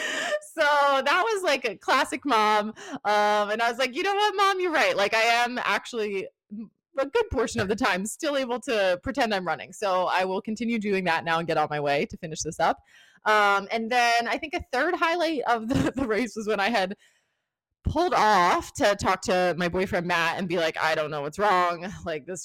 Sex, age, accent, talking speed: female, 20-39, American, 220 wpm